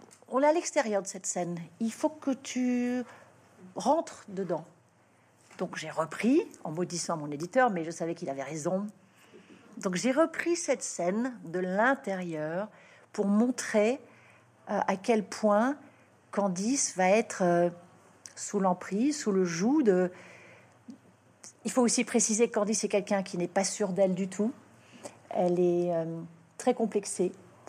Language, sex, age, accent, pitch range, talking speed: French, female, 50-69, French, 180-250 Hz, 150 wpm